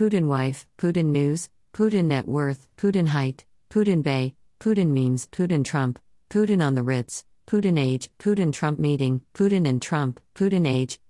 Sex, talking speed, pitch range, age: female, 155 wpm, 120-175 Hz, 50-69